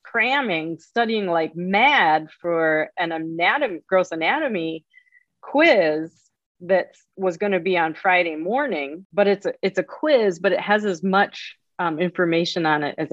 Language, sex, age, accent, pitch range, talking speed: English, female, 30-49, American, 170-260 Hz, 155 wpm